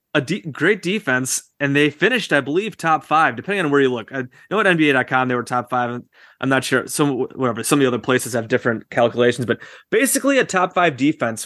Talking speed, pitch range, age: 225 wpm, 125-155 Hz, 20-39